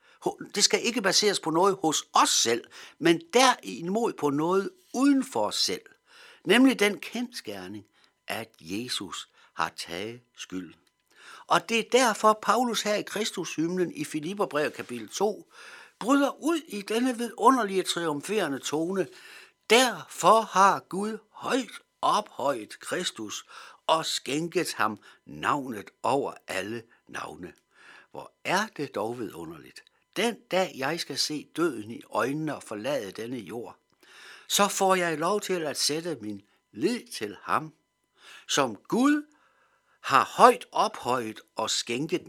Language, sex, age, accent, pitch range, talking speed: Danish, male, 60-79, native, 165-250 Hz, 130 wpm